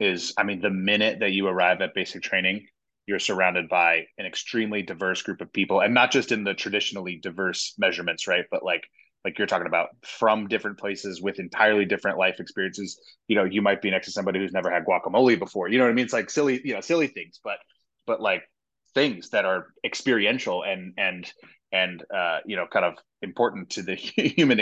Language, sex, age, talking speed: English, male, 20-39, 210 wpm